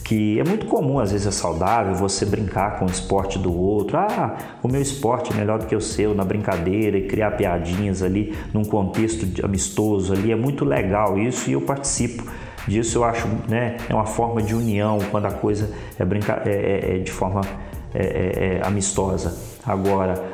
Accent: Brazilian